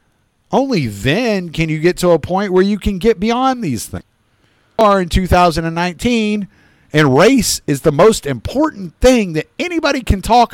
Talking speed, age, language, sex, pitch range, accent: 170 wpm, 50-69, English, male, 115-185 Hz, American